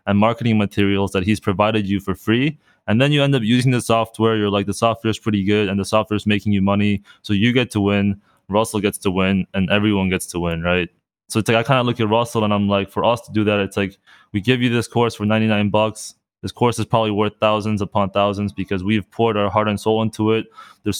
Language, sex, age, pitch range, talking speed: English, male, 20-39, 100-110 Hz, 260 wpm